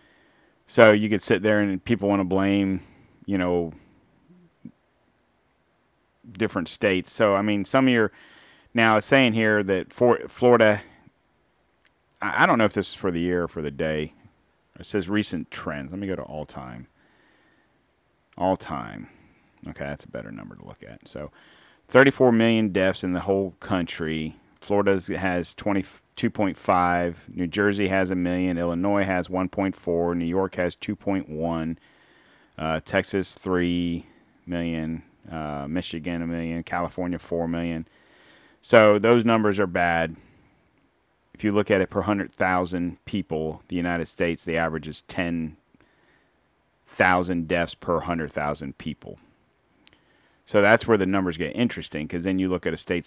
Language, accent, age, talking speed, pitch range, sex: English, American, 40-59, 150 wpm, 85-100 Hz, male